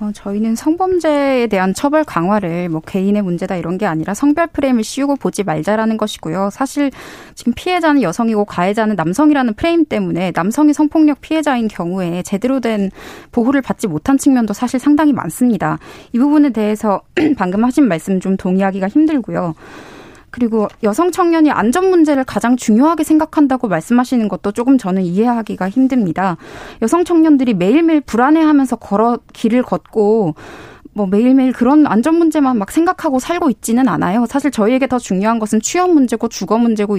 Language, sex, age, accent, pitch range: Korean, female, 20-39, native, 205-285 Hz